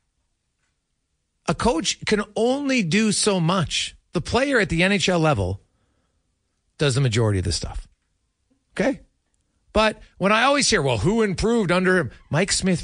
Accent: American